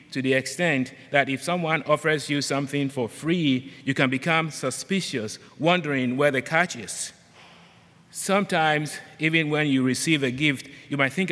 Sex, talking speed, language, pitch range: male, 160 wpm, English, 125-155 Hz